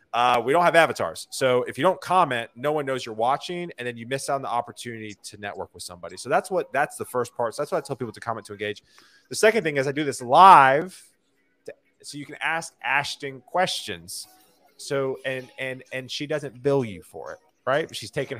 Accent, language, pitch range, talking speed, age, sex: American, English, 115-145 Hz, 230 wpm, 30-49, male